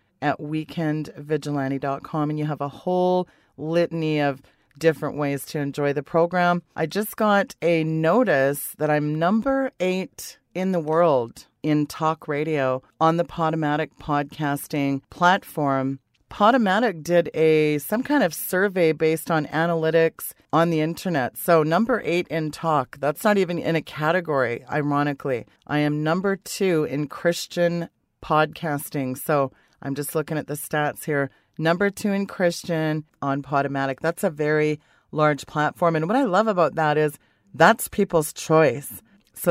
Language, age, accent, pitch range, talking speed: English, 40-59, American, 145-175 Hz, 145 wpm